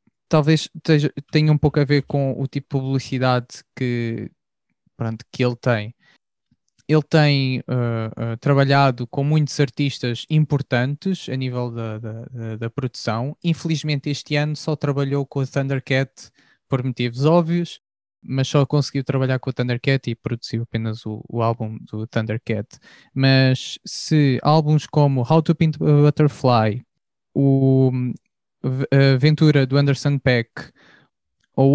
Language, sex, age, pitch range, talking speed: Portuguese, male, 20-39, 130-160 Hz, 135 wpm